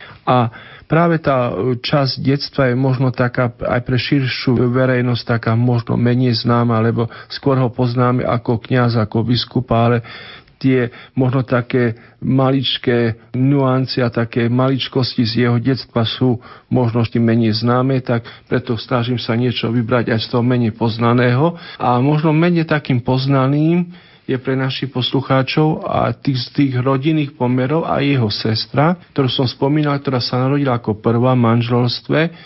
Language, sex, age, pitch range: Slovak, male, 50-69, 120-140 Hz